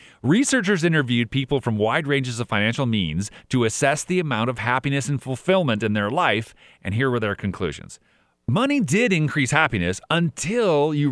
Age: 30-49